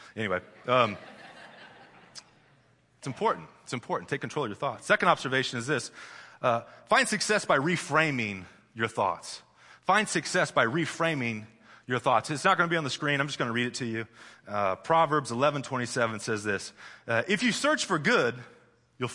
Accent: American